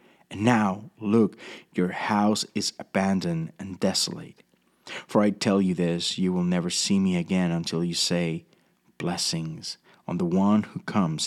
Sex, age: male, 30-49